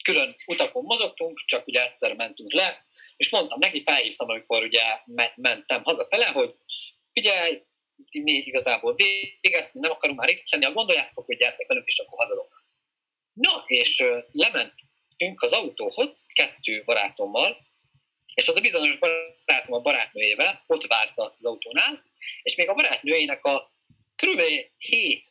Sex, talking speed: male, 140 wpm